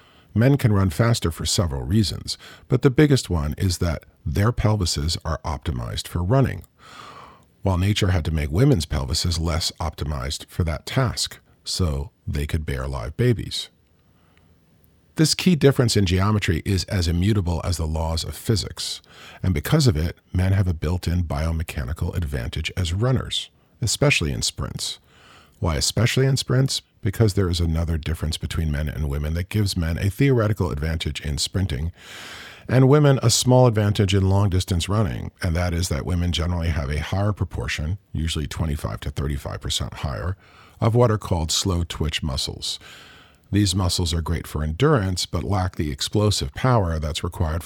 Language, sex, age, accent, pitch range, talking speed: English, male, 50-69, American, 80-105 Hz, 165 wpm